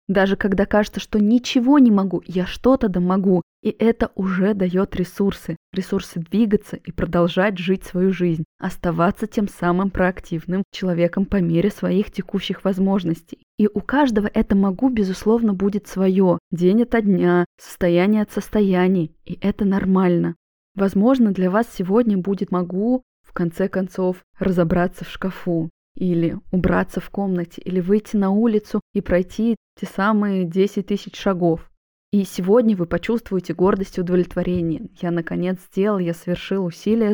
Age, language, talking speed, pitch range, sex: 20-39, Russian, 145 wpm, 180-205 Hz, female